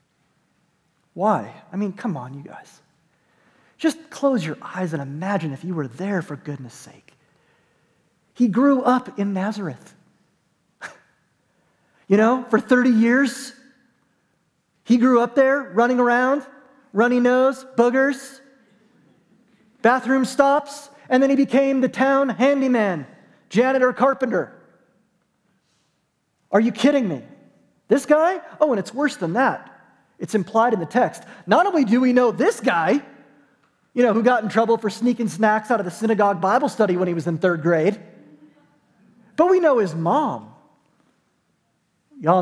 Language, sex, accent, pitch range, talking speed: English, male, American, 180-250 Hz, 145 wpm